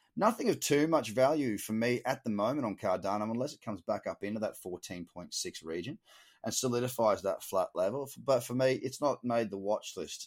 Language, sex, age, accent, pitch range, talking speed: English, male, 30-49, Australian, 100-135 Hz, 205 wpm